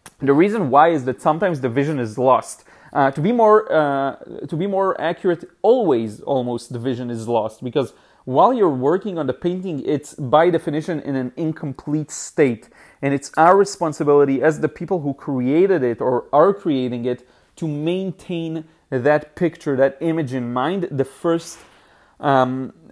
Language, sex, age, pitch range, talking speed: English, male, 30-49, 135-170 Hz, 175 wpm